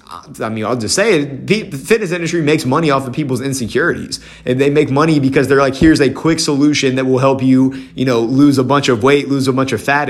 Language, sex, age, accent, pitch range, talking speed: English, male, 30-49, American, 120-145 Hz, 250 wpm